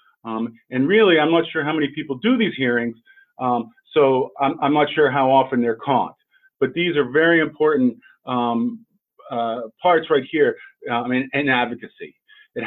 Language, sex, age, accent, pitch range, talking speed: English, male, 40-59, American, 125-165 Hz, 180 wpm